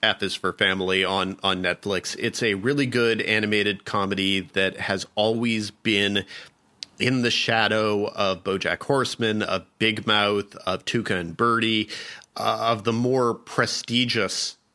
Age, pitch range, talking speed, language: 40-59, 100-125 Hz, 140 wpm, English